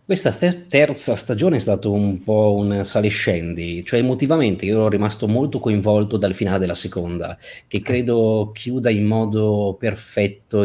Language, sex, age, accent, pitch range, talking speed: Italian, male, 20-39, native, 90-110 Hz, 145 wpm